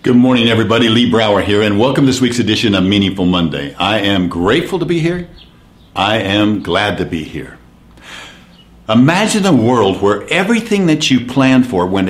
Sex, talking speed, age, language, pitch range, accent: male, 185 wpm, 60-79, English, 90-125 Hz, American